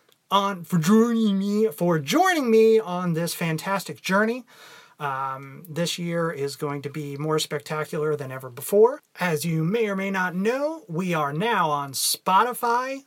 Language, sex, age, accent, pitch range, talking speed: English, male, 30-49, American, 155-220 Hz, 160 wpm